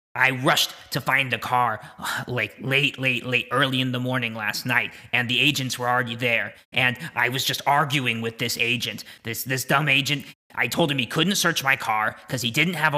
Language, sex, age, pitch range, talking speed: English, male, 30-49, 120-140 Hz, 215 wpm